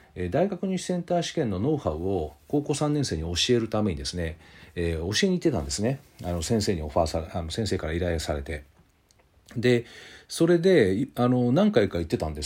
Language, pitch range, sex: Japanese, 85-130 Hz, male